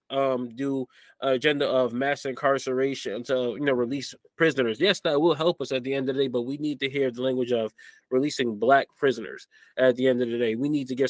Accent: American